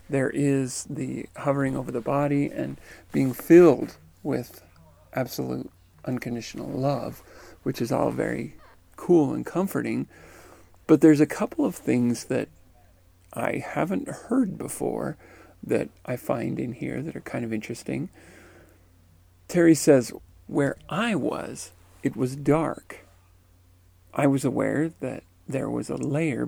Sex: male